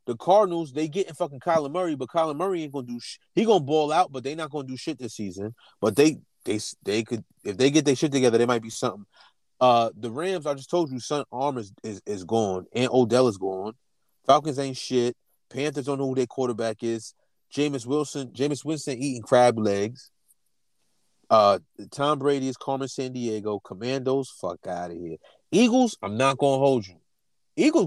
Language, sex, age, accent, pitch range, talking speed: English, male, 30-49, American, 115-150 Hz, 200 wpm